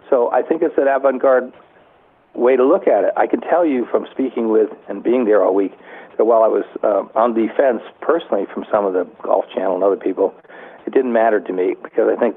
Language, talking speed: English, 235 wpm